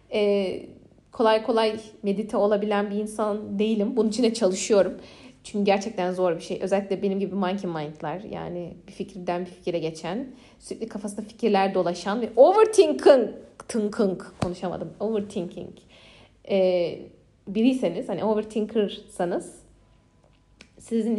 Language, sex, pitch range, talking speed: Turkish, female, 195-265 Hz, 120 wpm